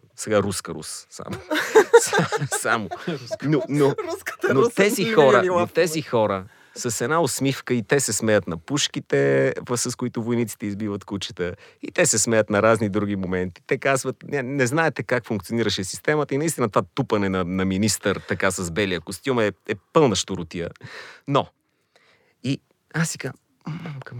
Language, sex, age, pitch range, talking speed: Bulgarian, male, 40-59, 100-135 Hz, 150 wpm